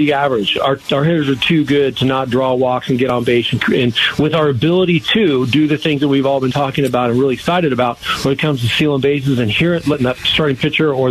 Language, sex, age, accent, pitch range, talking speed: English, male, 40-59, American, 130-155 Hz, 250 wpm